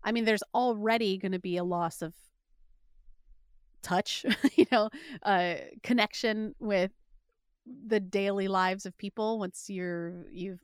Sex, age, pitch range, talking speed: female, 30-49, 185-245 Hz, 135 wpm